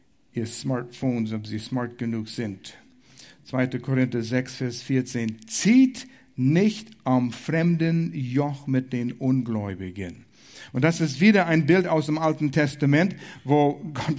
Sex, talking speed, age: male, 135 wpm, 60-79